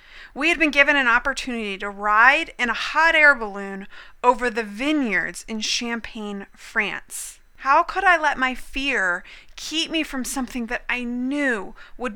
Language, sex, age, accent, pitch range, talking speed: English, female, 30-49, American, 220-285 Hz, 165 wpm